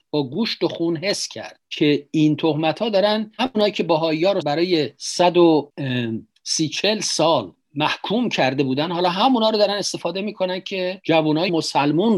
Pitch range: 140-180 Hz